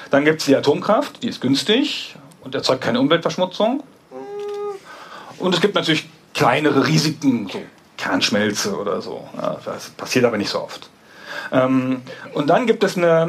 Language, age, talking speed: German, 40-59, 155 wpm